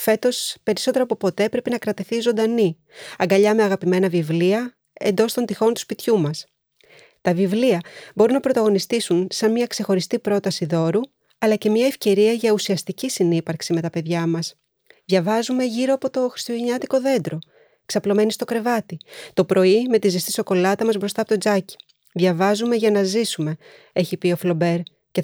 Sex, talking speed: female, 160 wpm